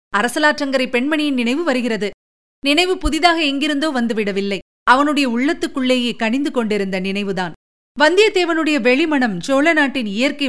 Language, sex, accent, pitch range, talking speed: Tamil, female, native, 220-300 Hz, 105 wpm